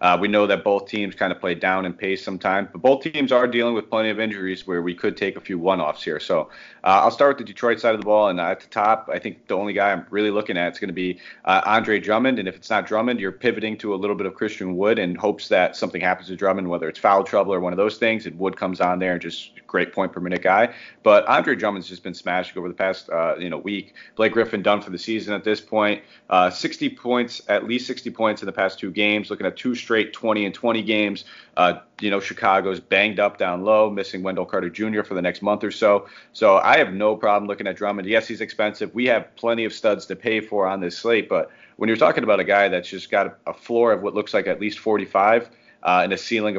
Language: English